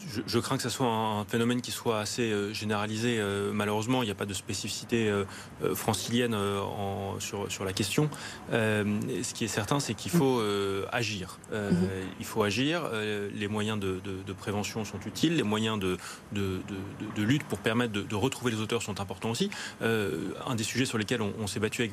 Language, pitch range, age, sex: French, 100-120 Hz, 30-49, male